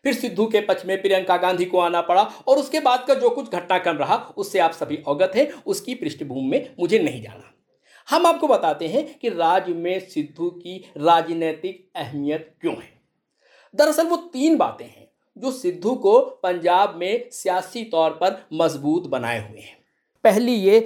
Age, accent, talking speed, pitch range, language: 50-69, native, 175 wpm, 175-230 Hz, Hindi